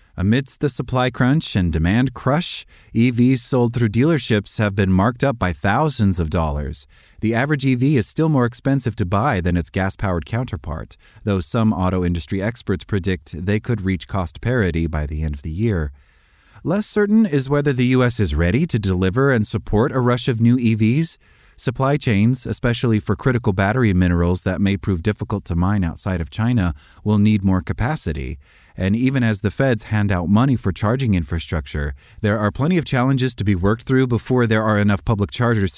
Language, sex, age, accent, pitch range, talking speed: English, male, 30-49, American, 90-120 Hz, 190 wpm